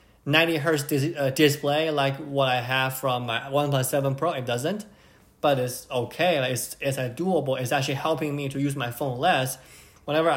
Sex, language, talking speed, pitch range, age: male, English, 195 wpm, 130-145 Hz, 20-39